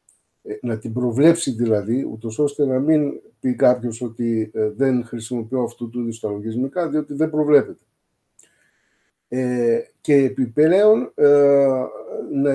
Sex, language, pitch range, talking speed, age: male, Greek, 115-150 Hz, 105 wpm, 50-69